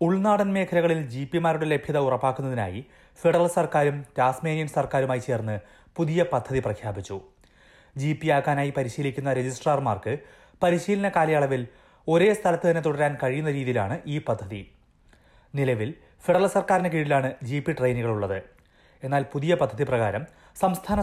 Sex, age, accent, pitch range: male, 30-49, native, 120-165 Hz